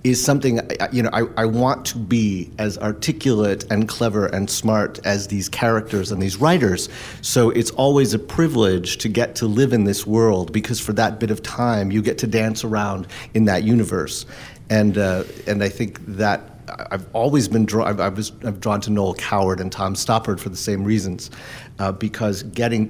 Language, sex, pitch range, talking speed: English, male, 100-115 Hz, 190 wpm